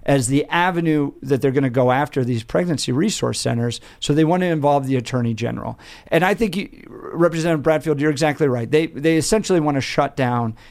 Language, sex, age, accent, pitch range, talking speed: English, male, 50-69, American, 135-190 Hz, 205 wpm